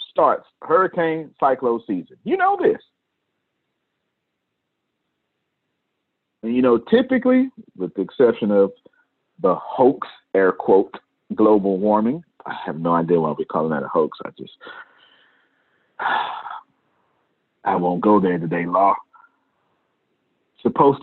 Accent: American